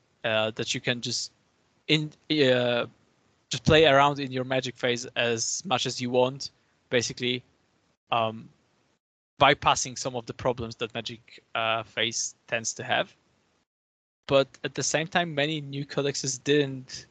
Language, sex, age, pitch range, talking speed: English, male, 20-39, 120-145 Hz, 145 wpm